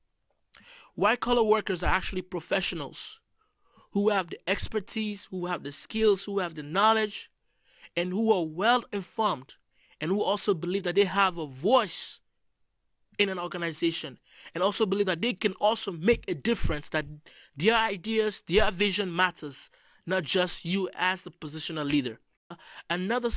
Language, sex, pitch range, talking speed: English, male, 170-215 Hz, 145 wpm